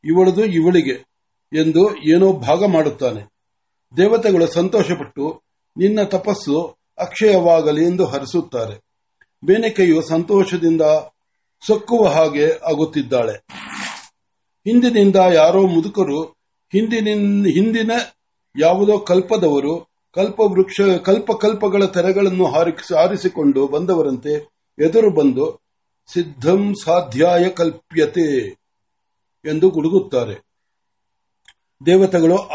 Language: Marathi